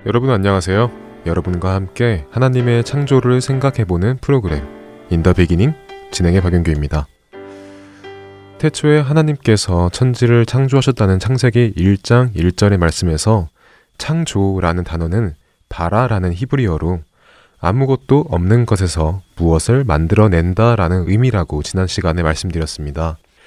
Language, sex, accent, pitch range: Korean, male, native, 85-125 Hz